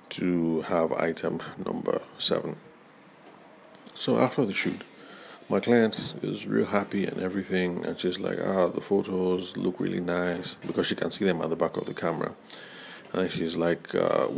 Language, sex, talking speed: English, male, 165 wpm